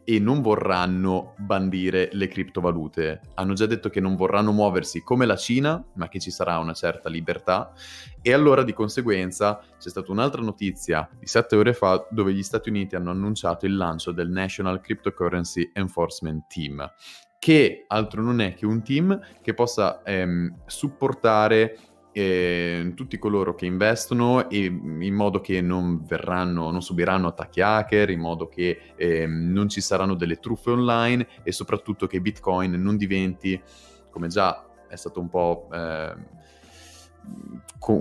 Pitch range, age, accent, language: 85-110 Hz, 20-39, native, Italian